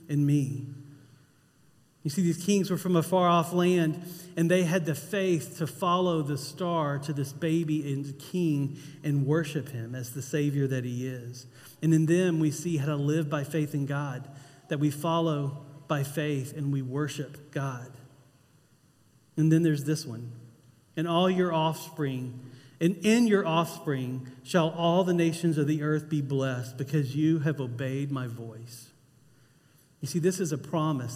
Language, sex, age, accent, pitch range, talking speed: English, male, 40-59, American, 140-175 Hz, 175 wpm